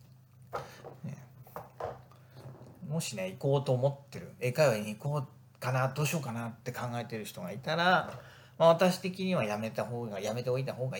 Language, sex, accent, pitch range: Japanese, male, native, 125-165 Hz